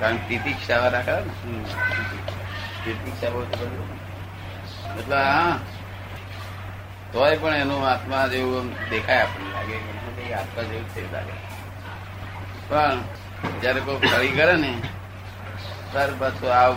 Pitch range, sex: 95-115 Hz, male